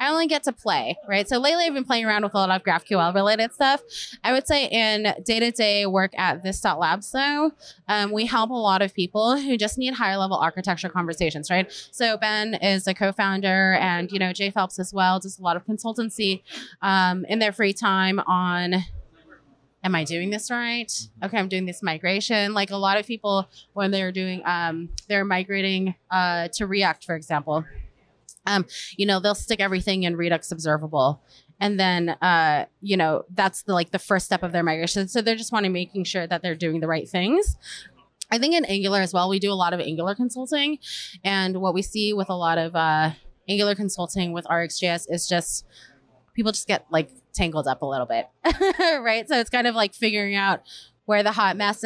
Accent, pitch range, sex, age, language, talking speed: American, 180-215 Hz, female, 20-39, English, 205 wpm